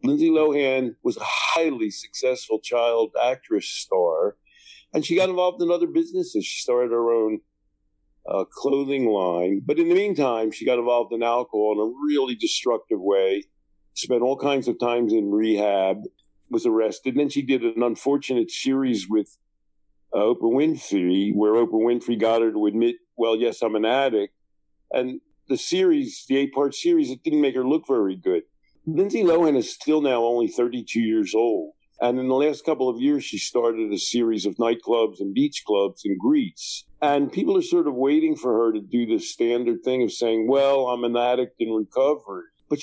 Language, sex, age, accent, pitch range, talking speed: English, male, 50-69, American, 115-170 Hz, 185 wpm